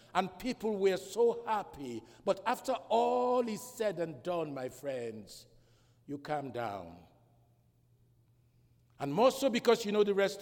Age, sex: 60-79, male